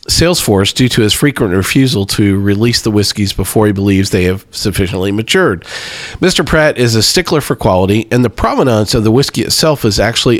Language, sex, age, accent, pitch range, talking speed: English, male, 40-59, American, 95-120 Hz, 190 wpm